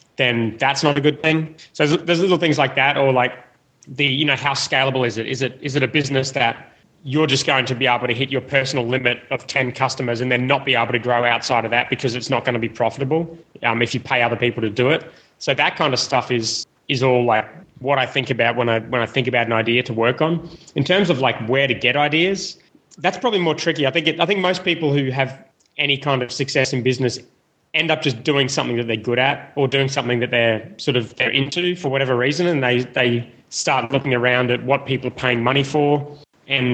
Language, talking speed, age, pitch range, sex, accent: English, 250 wpm, 20-39, 120-145 Hz, male, Australian